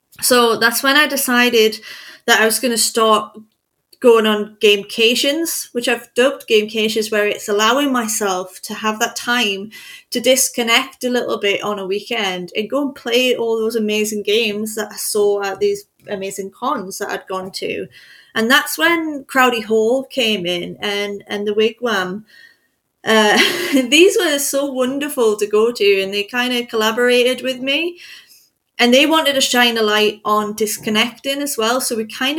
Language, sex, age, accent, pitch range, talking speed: English, female, 30-49, British, 205-255 Hz, 170 wpm